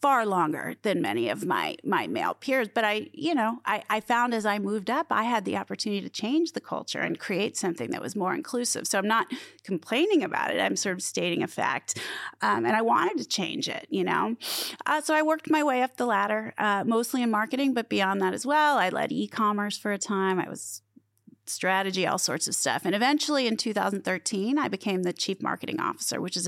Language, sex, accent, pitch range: English, female, American, 185-245 Hz